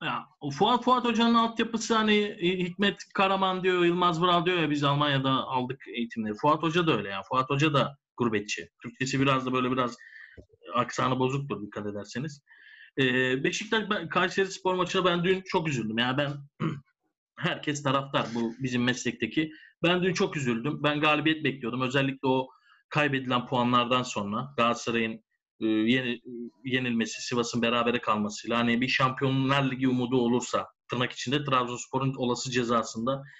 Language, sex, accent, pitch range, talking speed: Turkish, male, native, 130-180 Hz, 145 wpm